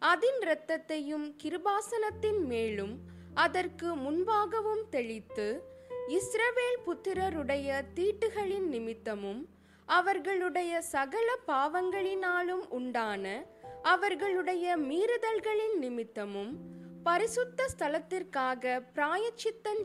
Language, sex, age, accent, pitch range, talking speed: Tamil, female, 20-39, native, 250-410 Hz, 65 wpm